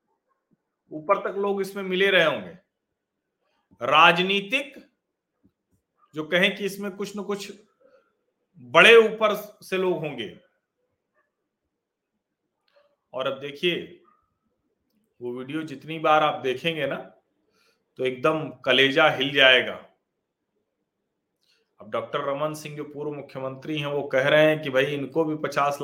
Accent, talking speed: native, 120 wpm